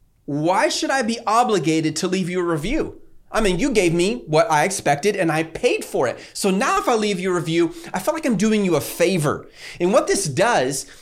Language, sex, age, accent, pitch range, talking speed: English, male, 30-49, American, 130-195 Hz, 235 wpm